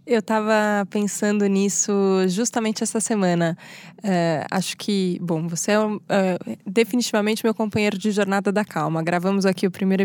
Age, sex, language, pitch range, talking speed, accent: 20-39, female, Portuguese, 185-225 Hz, 150 wpm, Brazilian